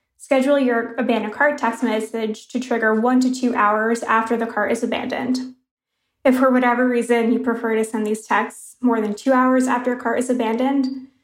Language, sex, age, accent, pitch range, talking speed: English, female, 20-39, American, 230-255 Hz, 190 wpm